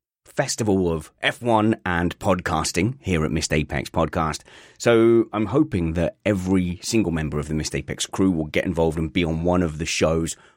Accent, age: British, 30-49